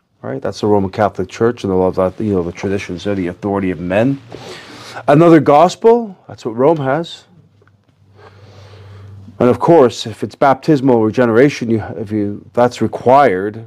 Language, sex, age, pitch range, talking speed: English, male, 30-49, 100-135 Hz, 160 wpm